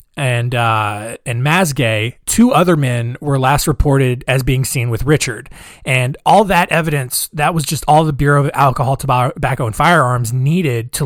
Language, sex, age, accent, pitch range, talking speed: English, male, 20-39, American, 125-160 Hz, 175 wpm